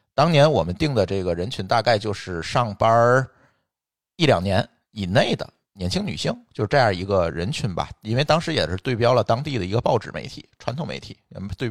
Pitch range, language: 95-125 Hz, Chinese